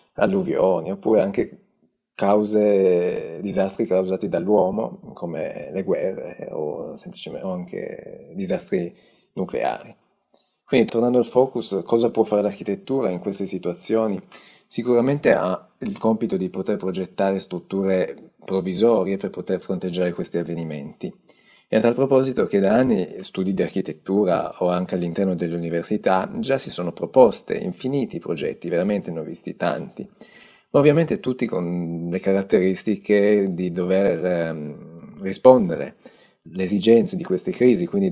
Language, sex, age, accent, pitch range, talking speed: Italian, male, 30-49, native, 90-115 Hz, 130 wpm